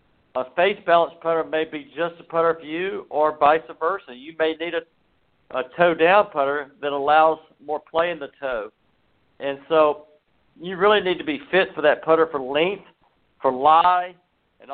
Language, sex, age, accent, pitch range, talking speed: English, male, 50-69, American, 140-165 Hz, 180 wpm